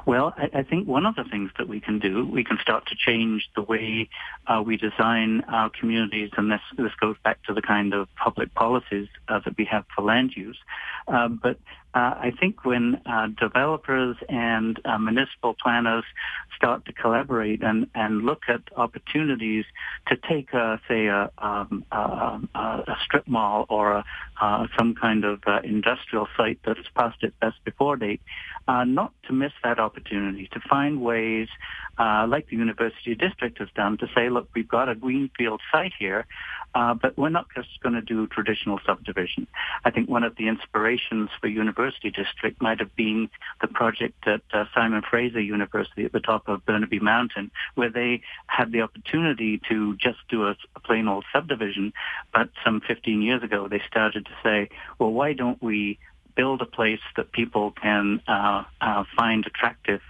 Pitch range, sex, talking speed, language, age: 105-120 Hz, male, 180 wpm, English, 60-79